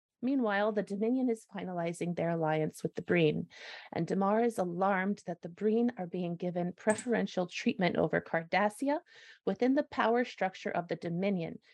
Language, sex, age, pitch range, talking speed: English, female, 30-49, 180-245 Hz, 160 wpm